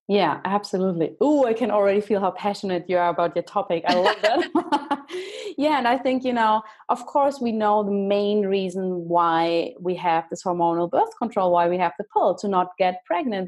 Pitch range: 185-240 Hz